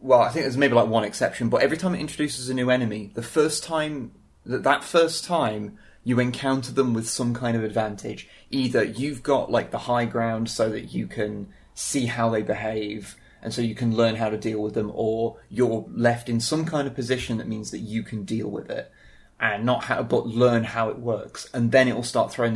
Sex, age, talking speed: male, 30-49, 230 wpm